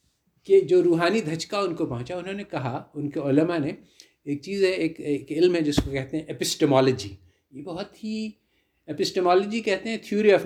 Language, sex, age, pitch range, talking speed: Urdu, male, 50-69, 145-215 Hz, 195 wpm